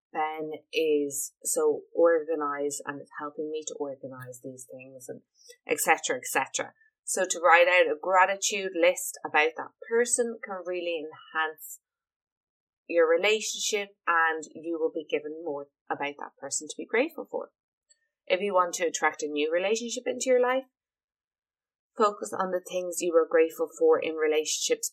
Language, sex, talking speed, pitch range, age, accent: English, female, 155 wpm, 155-250 Hz, 20-39, Irish